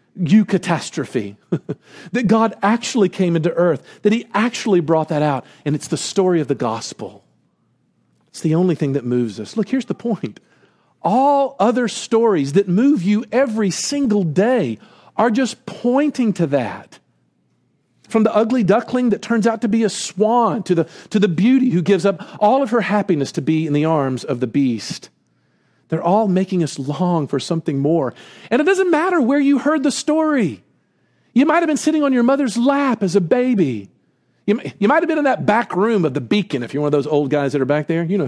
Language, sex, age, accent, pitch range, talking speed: English, male, 50-69, American, 165-245 Hz, 200 wpm